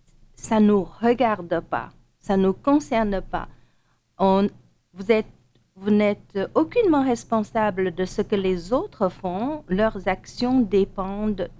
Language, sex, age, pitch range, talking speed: French, female, 50-69, 185-225 Hz, 135 wpm